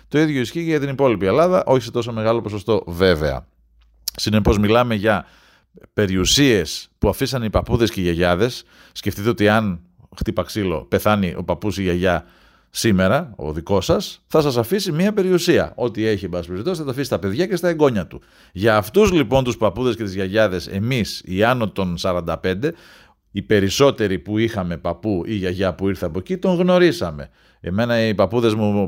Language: Greek